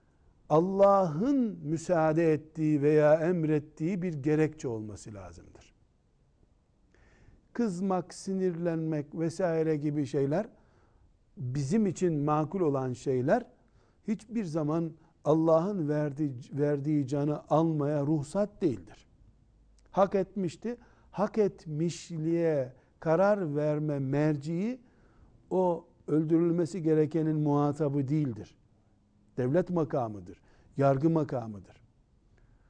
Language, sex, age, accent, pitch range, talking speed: Turkish, male, 60-79, native, 130-170 Hz, 80 wpm